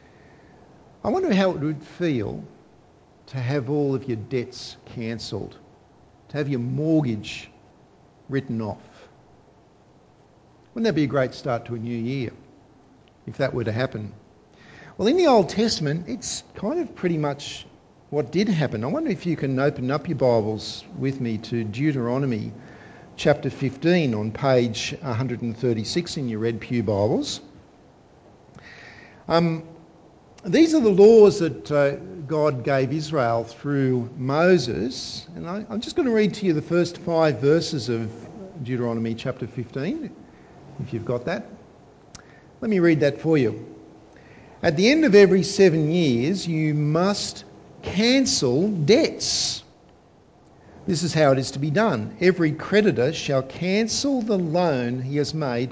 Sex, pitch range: male, 120-170 Hz